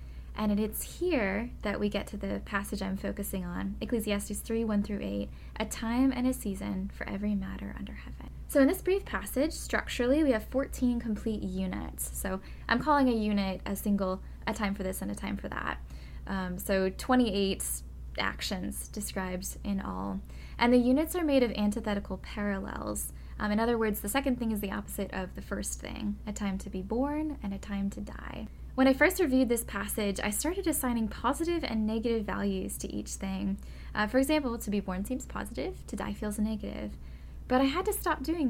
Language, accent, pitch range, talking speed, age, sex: English, American, 195-250 Hz, 200 wpm, 10-29, female